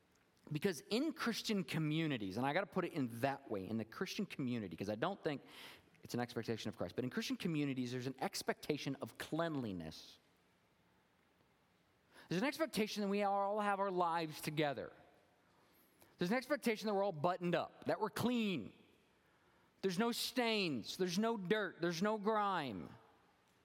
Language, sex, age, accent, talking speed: English, male, 40-59, American, 165 wpm